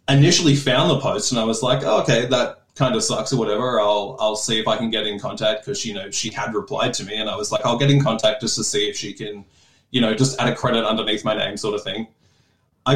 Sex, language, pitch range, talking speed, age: male, English, 105-130 Hz, 280 wpm, 20-39